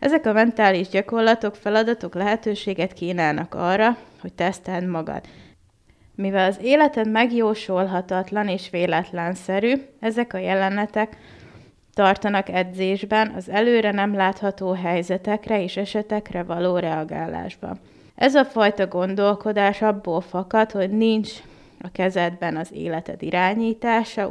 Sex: female